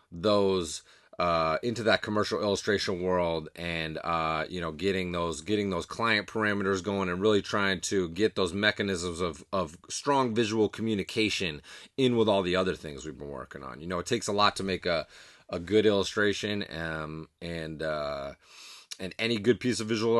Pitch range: 90-115 Hz